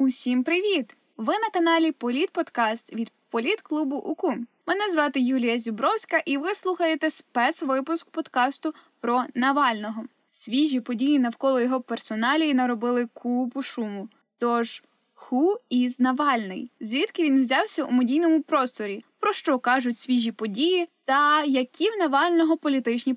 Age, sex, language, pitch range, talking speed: 10-29, female, Ukrainian, 245-335 Hz, 125 wpm